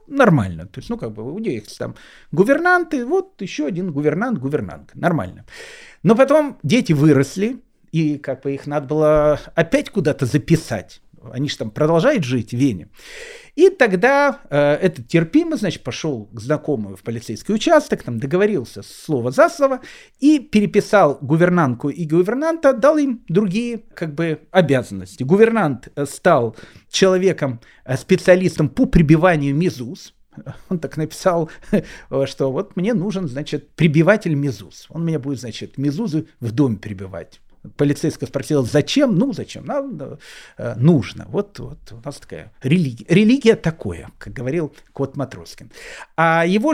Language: Russian